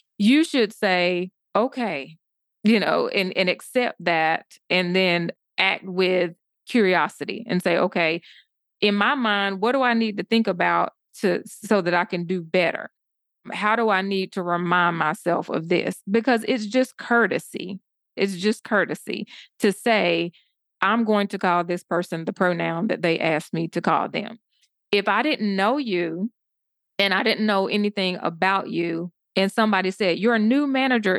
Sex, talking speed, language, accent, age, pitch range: female, 165 wpm, English, American, 20-39, 180-230 Hz